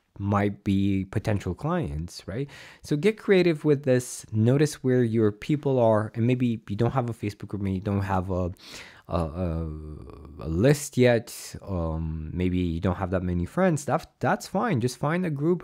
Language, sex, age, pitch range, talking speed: English, male, 20-39, 95-125 Hz, 180 wpm